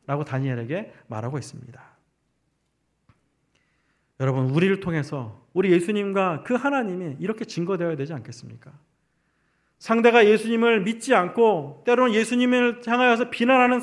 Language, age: Korean, 40-59